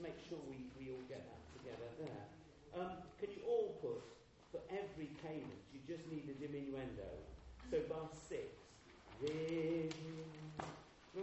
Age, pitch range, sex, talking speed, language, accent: 40-59, 135-185 Hz, male, 140 wpm, English, British